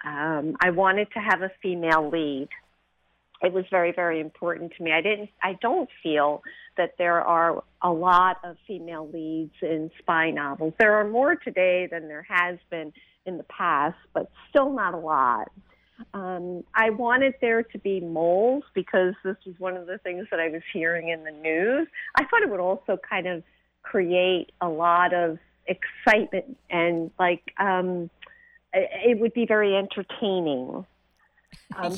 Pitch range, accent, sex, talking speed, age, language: 165-200 Hz, American, female, 165 wpm, 50-69, English